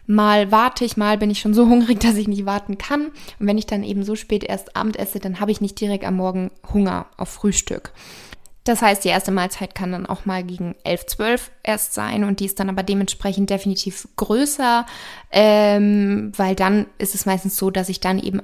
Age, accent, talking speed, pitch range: 20-39, German, 220 wpm, 195-225 Hz